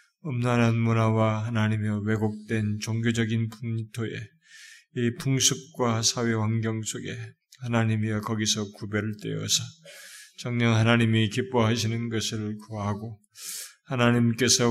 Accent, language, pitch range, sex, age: native, Korean, 110-130 Hz, male, 20-39